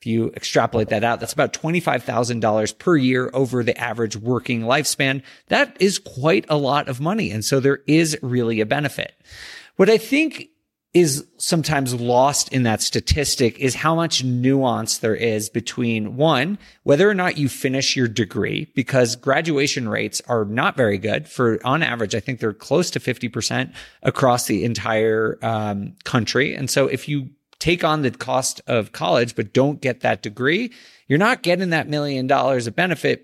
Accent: American